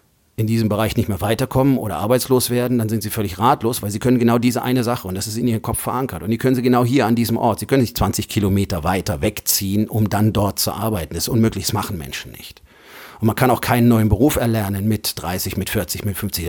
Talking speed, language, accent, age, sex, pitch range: 255 wpm, German, German, 40-59, male, 100-115 Hz